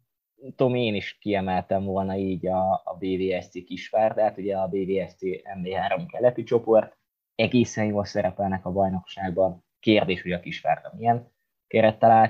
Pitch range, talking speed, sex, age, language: 90-110 Hz, 135 wpm, male, 20-39, Hungarian